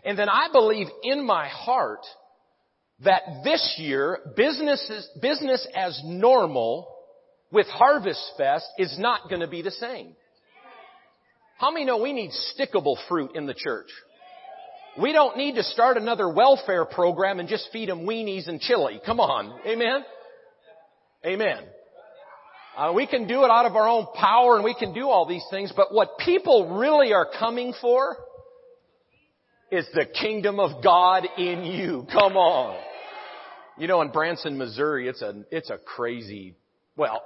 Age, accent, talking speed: 50-69, American, 155 wpm